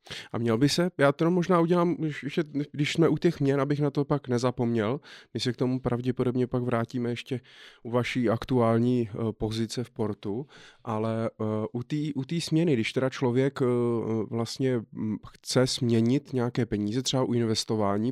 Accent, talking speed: native, 160 wpm